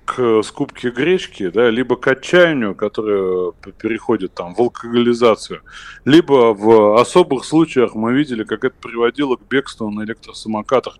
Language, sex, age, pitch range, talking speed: Russian, male, 20-39, 105-130 Hz, 125 wpm